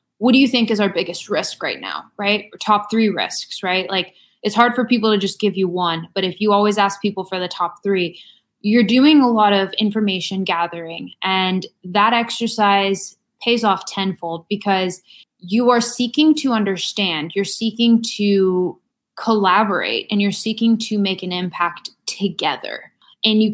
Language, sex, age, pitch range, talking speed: English, female, 20-39, 195-235 Hz, 175 wpm